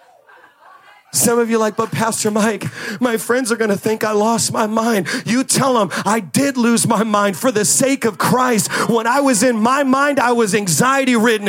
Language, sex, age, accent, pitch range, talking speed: English, male, 40-59, American, 225-315 Hz, 210 wpm